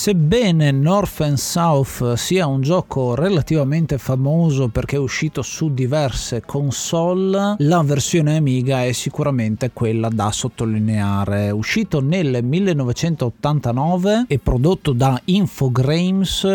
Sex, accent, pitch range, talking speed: male, native, 125-170 Hz, 110 wpm